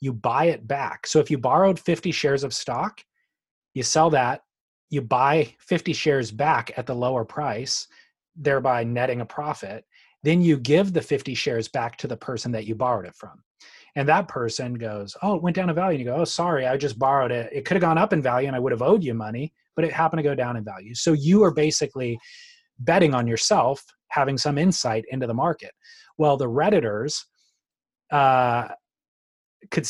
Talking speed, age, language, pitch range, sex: 205 wpm, 30-49, English, 125-160 Hz, male